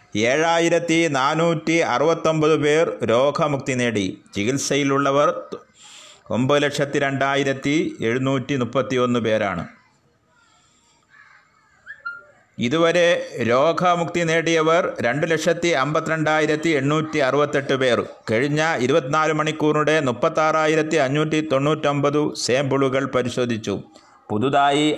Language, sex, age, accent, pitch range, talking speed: Malayalam, male, 30-49, native, 135-160 Hz, 75 wpm